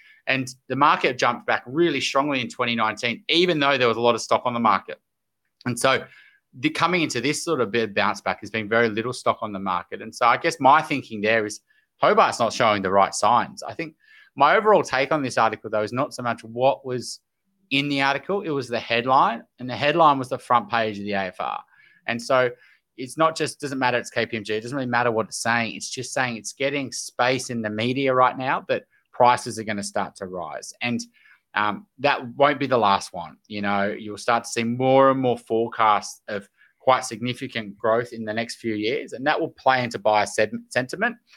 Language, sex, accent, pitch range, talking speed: English, male, Australian, 115-140 Hz, 220 wpm